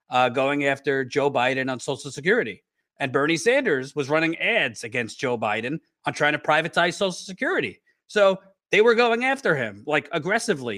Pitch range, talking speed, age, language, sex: 145-195 Hz, 175 wpm, 40-59, English, male